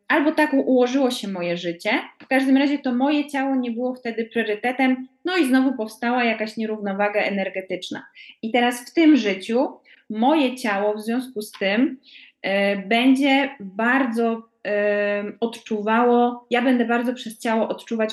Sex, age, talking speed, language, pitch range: female, 20-39, 140 wpm, Polish, 210-245 Hz